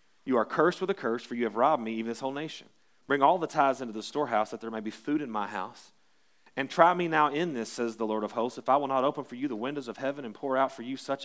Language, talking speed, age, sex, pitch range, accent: English, 310 wpm, 40-59, male, 115-140 Hz, American